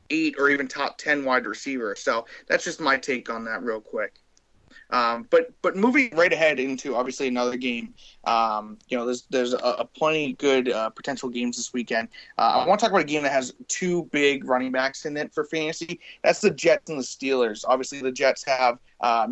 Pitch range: 130-155 Hz